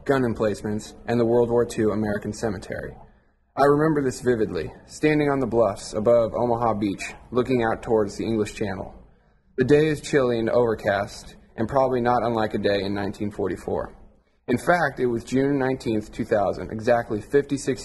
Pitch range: 110-130 Hz